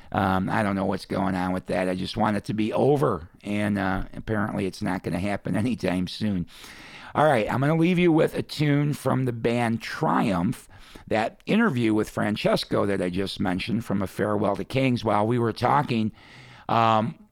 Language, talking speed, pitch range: English, 200 wpm, 100-125 Hz